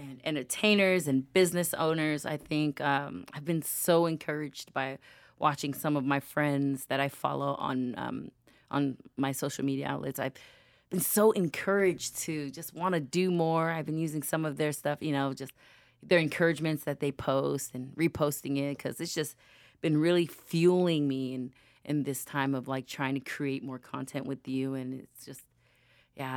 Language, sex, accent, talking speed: English, female, American, 180 wpm